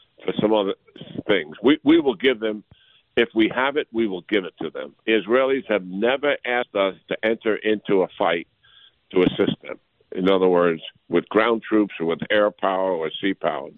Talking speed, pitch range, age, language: 195 wpm, 95-130 Hz, 60-79, English